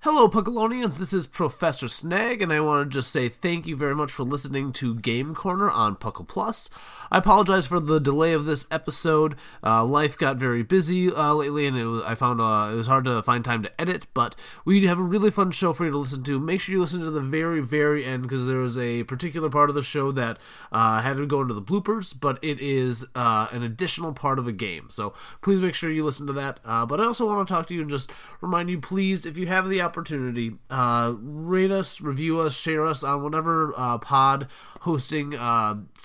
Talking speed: 235 wpm